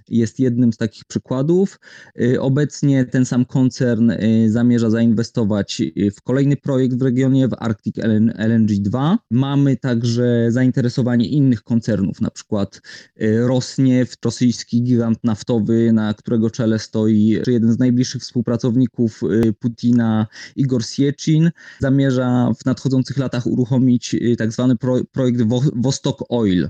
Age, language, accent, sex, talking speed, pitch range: 20-39, Polish, native, male, 115 wpm, 120-135 Hz